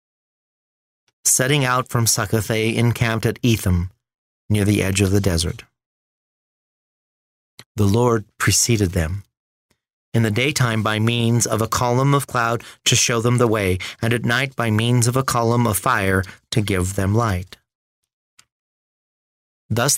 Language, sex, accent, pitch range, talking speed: English, male, American, 100-120 Hz, 140 wpm